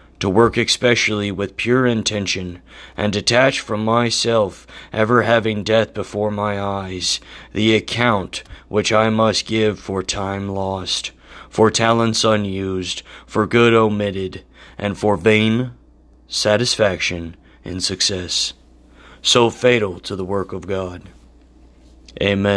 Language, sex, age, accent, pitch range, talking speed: English, male, 30-49, American, 100-130 Hz, 120 wpm